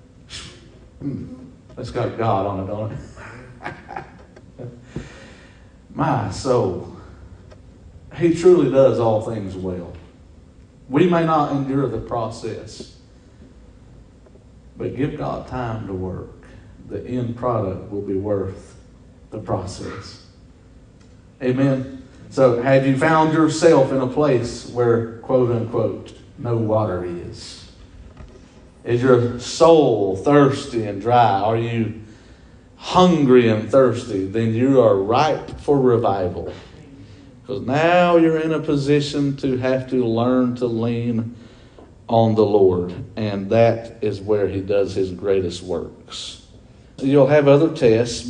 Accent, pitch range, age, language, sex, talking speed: American, 100-130 Hz, 50-69, English, male, 120 wpm